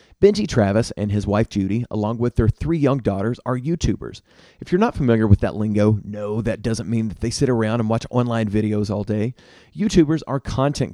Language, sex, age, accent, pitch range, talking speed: English, male, 30-49, American, 105-140 Hz, 210 wpm